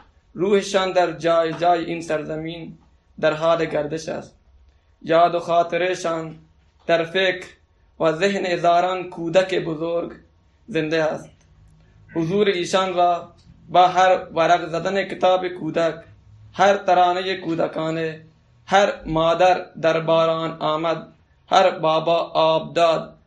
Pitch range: 160-185 Hz